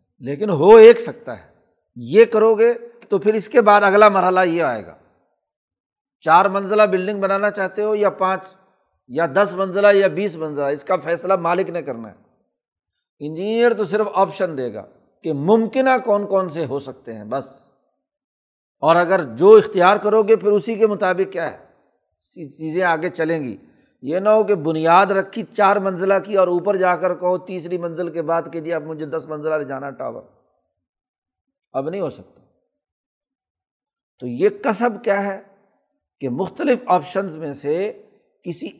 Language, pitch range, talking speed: Urdu, 170-220 Hz, 170 wpm